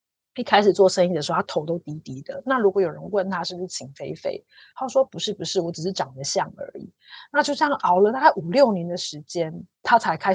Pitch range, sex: 170-235 Hz, female